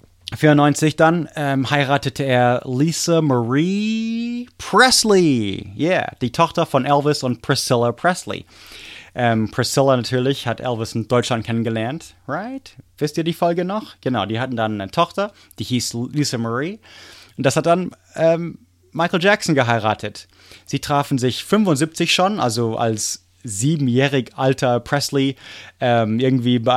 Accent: German